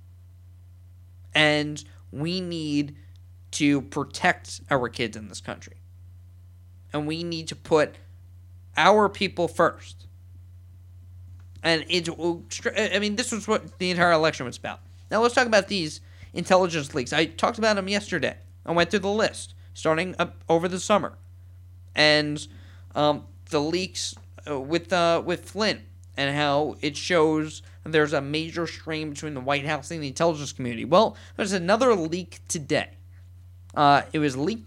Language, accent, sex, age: English, American, male, 20-39